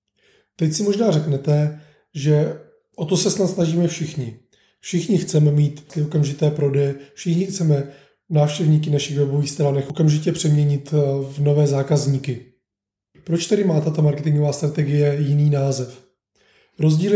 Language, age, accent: Czech, 20-39, native